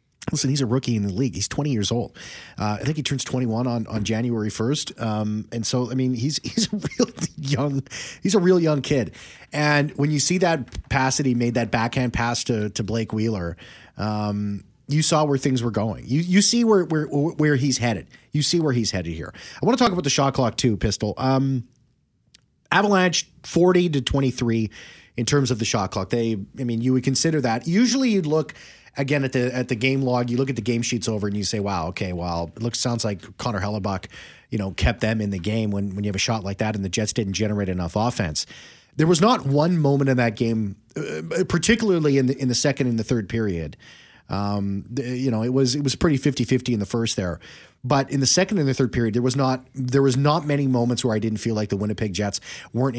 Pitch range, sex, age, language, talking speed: 110-145 Hz, male, 30-49, English, 235 wpm